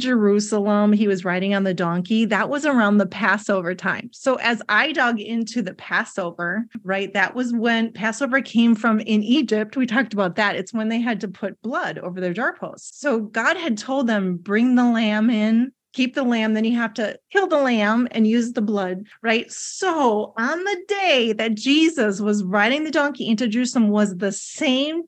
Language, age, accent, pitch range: English, 30-49, American, 210-270 Hz